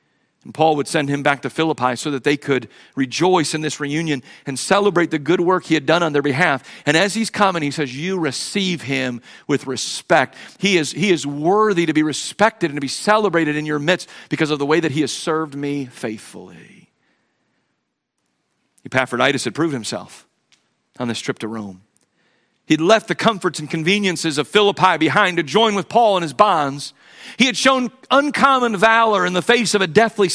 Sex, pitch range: male, 145-215 Hz